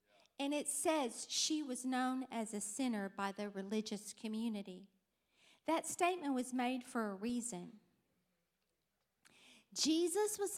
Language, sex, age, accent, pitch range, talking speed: English, female, 50-69, American, 240-330 Hz, 125 wpm